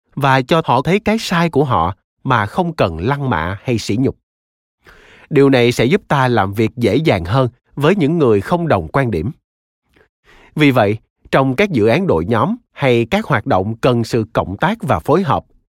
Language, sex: Vietnamese, male